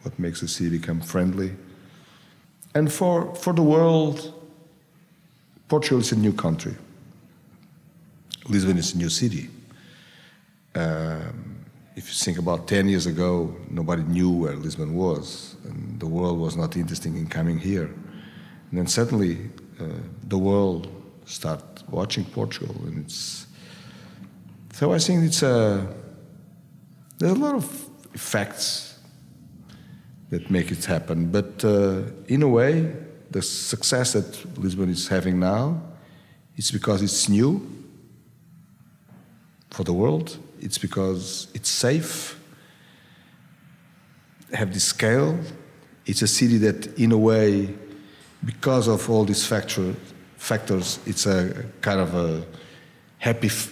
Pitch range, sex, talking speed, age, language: 90-150 Hz, male, 125 wpm, 50-69, English